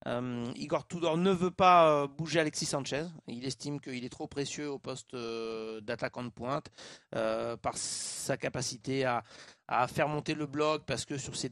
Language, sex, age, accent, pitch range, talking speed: French, male, 30-49, French, 130-165 Hz, 175 wpm